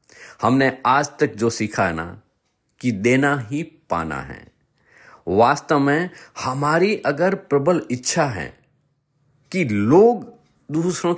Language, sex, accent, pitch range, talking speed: Hindi, male, native, 130-190 Hz, 115 wpm